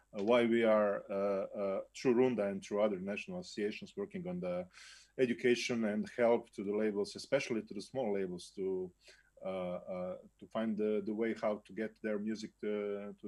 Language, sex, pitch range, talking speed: Croatian, male, 105-130 Hz, 180 wpm